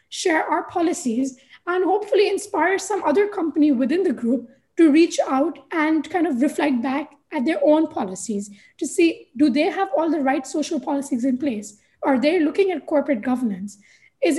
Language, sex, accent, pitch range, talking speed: English, female, Indian, 265-330 Hz, 180 wpm